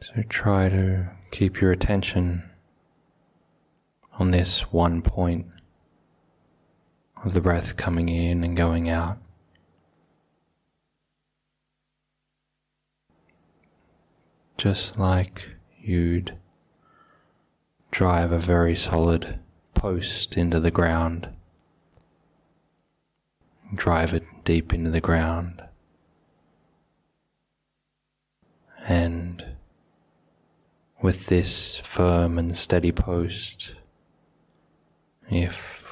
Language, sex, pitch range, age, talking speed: English, male, 85-90 Hz, 30-49, 70 wpm